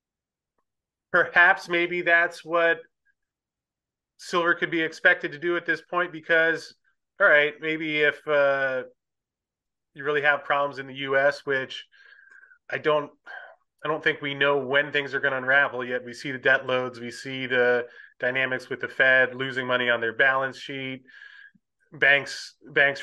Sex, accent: male, American